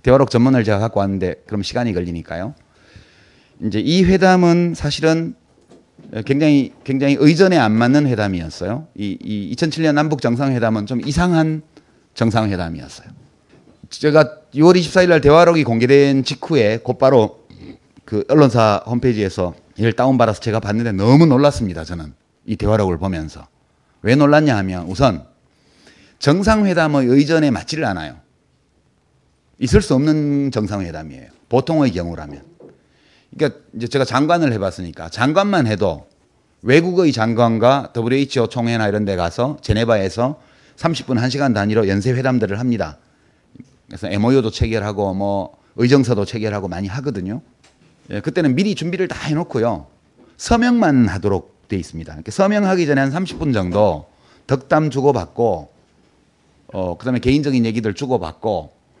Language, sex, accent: Korean, male, native